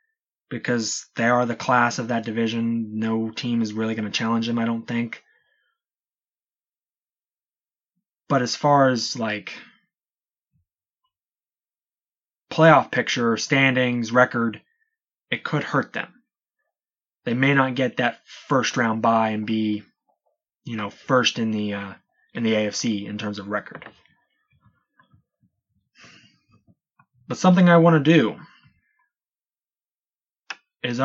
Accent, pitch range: American, 115-170 Hz